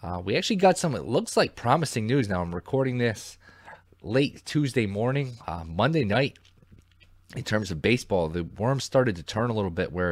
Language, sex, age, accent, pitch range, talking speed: English, male, 20-39, American, 90-115 Hz, 195 wpm